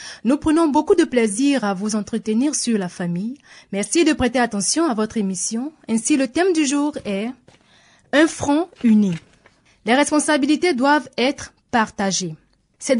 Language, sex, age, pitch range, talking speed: French, female, 20-39, 210-295 Hz, 150 wpm